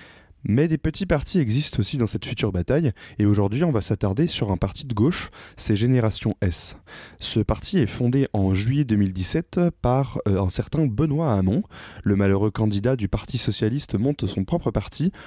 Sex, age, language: male, 20-39, French